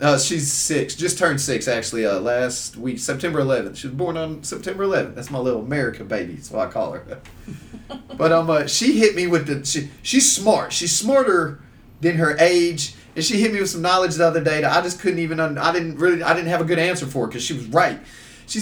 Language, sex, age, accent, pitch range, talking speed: English, male, 30-49, American, 155-220 Hz, 235 wpm